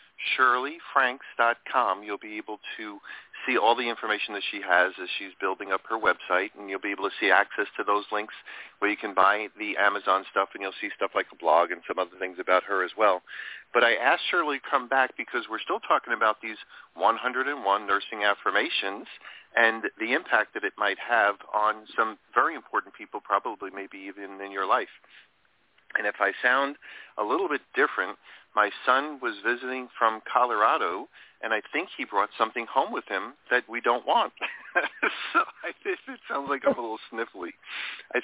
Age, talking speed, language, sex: 40-59, 190 wpm, English, male